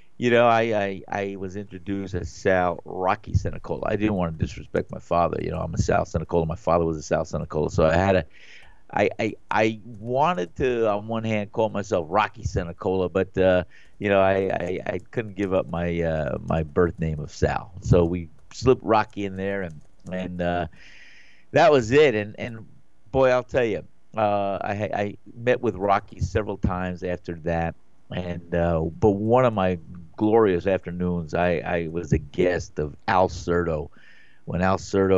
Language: English